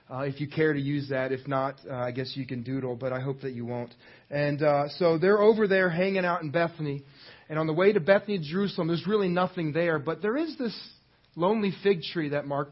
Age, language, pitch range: 30-49, English, 140-185 Hz